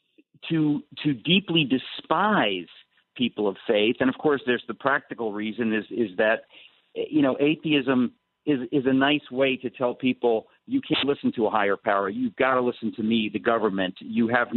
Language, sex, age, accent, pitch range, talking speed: English, male, 50-69, American, 120-150 Hz, 185 wpm